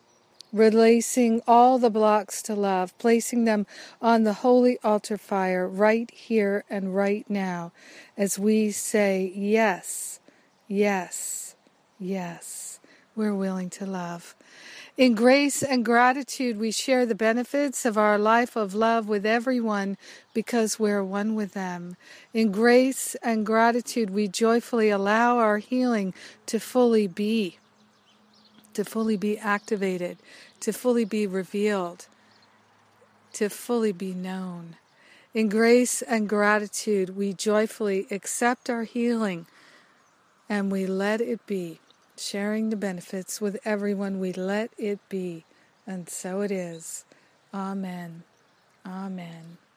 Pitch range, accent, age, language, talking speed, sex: 195-235 Hz, American, 50-69, English, 120 wpm, female